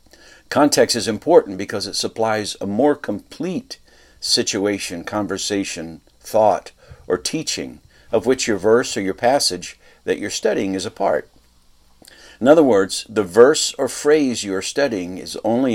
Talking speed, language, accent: 145 wpm, English, American